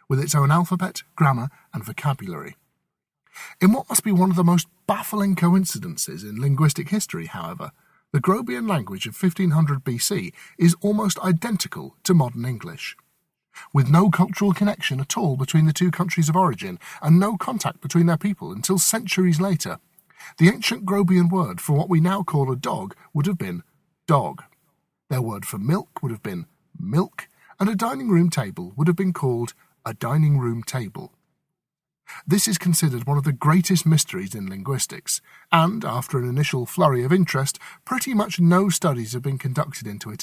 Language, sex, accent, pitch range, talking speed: English, male, British, 145-185 Hz, 170 wpm